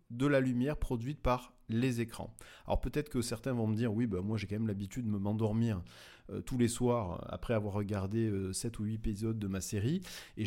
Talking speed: 220 wpm